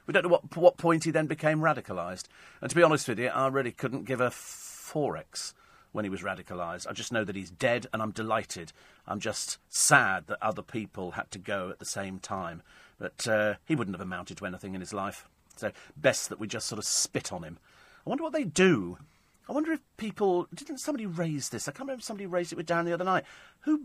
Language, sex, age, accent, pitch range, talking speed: English, male, 40-59, British, 120-185 Hz, 240 wpm